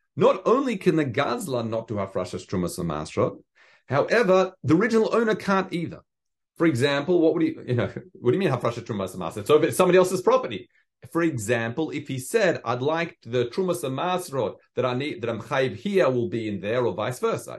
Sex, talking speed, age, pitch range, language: male, 200 wpm, 40-59, 120-170 Hz, English